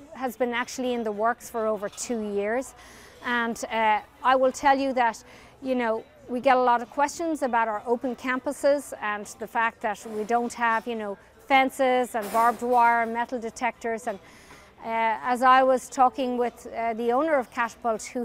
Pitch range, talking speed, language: 230-265 Hz, 190 wpm, English